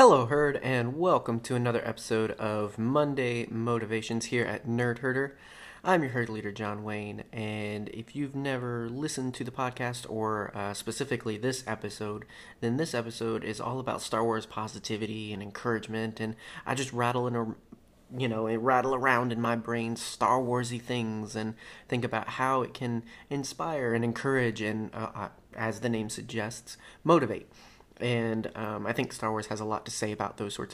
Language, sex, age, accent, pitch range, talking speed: English, male, 30-49, American, 110-125 Hz, 180 wpm